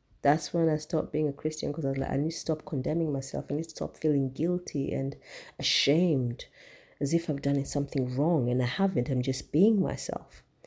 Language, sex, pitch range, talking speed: English, female, 135-155 Hz, 215 wpm